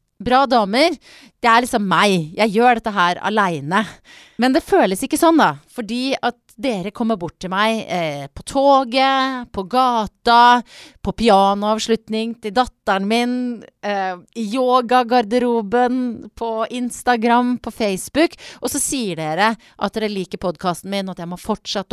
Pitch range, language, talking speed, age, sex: 180-245 Hz, English, 160 wpm, 30-49, female